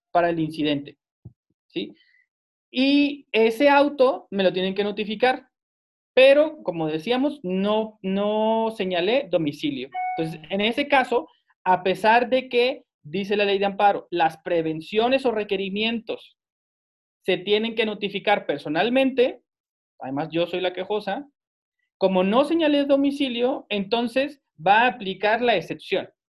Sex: male